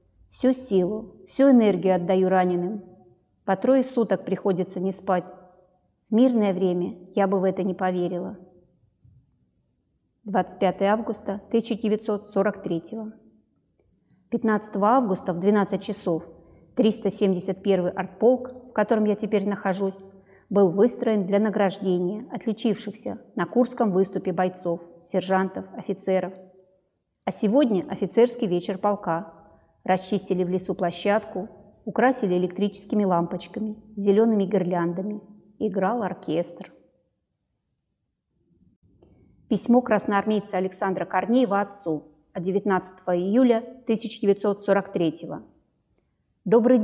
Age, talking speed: 30-49, 95 wpm